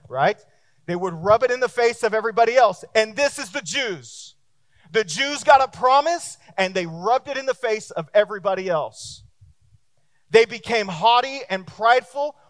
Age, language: 30-49, English